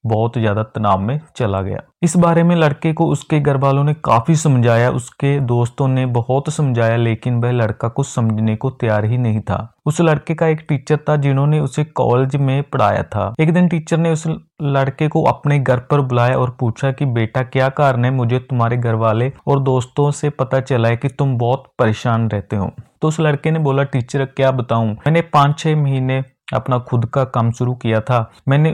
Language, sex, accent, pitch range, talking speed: Hindi, male, native, 120-145 Hz, 200 wpm